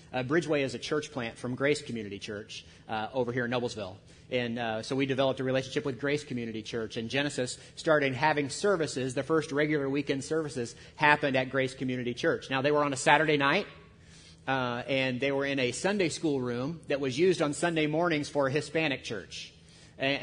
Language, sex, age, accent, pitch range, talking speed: English, male, 40-59, American, 130-155 Hz, 200 wpm